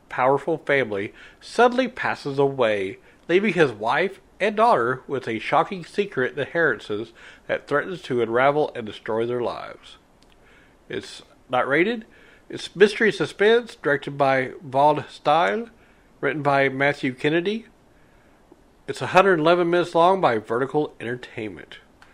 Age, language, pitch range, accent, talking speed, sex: 60-79, English, 135-175 Hz, American, 120 wpm, male